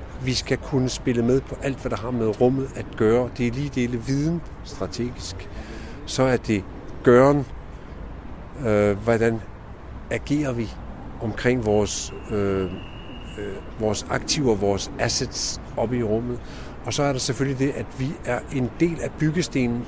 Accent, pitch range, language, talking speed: native, 110-135 Hz, Danish, 155 wpm